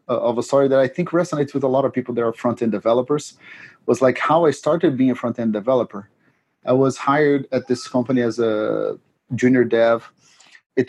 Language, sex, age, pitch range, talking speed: English, male, 30-49, 120-140 Hz, 200 wpm